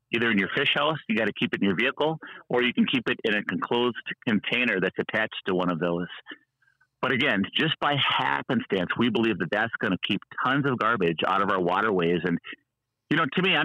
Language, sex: English, male